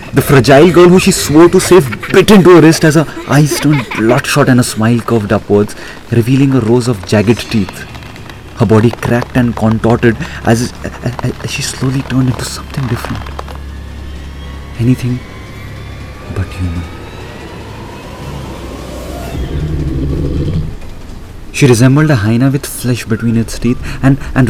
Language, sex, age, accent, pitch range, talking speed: Hindi, male, 30-49, native, 85-120 Hz, 135 wpm